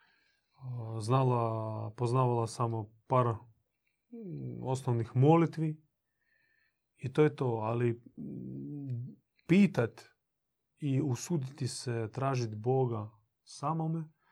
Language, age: Croatian, 30-49